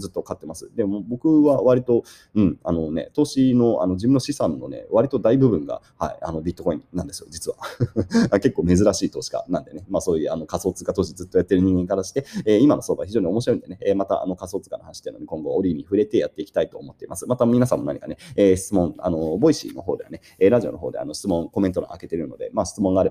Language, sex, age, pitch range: Japanese, male, 30-49, 95-140 Hz